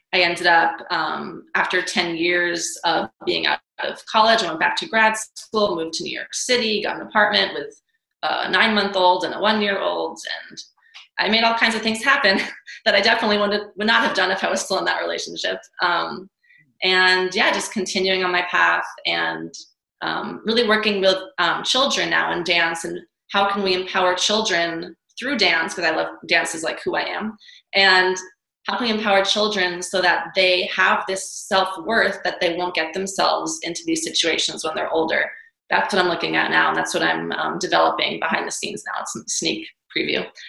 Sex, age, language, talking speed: female, 20-39, English, 195 wpm